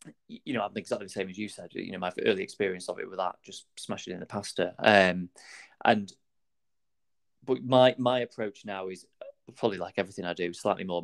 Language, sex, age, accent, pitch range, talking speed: English, male, 30-49, British, 95-115 Hz, 205 wpm